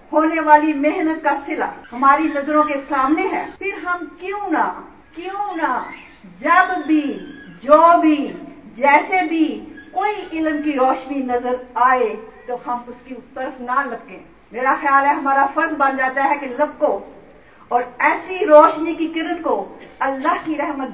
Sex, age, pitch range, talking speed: female, 50-69, 245-315 Hz, 155 wpm